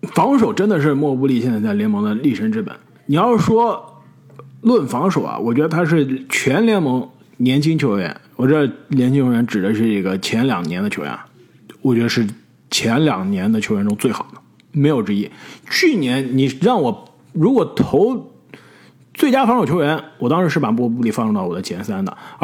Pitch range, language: 135-220 Hz, Chinese